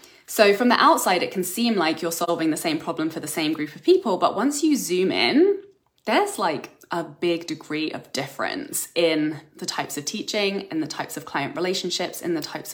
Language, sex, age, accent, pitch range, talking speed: English, female, 20-39, British, 160-225 Hz, 210 wpm